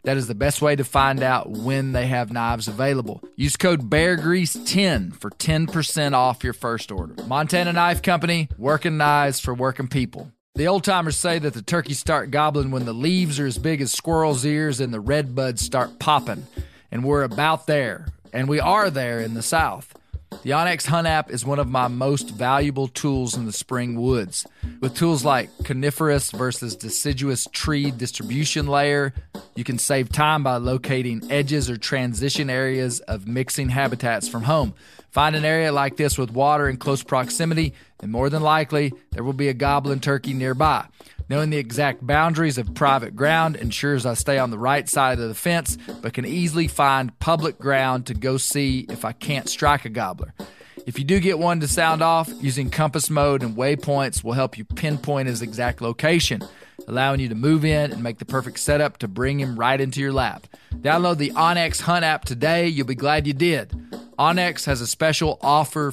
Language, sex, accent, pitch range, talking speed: English, male, American, 125-155 Hz, 190 wpm